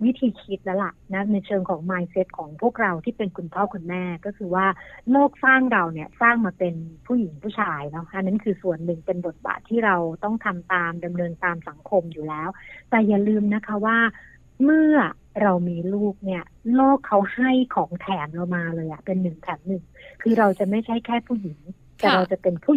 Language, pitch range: Thai, 180-225 Hz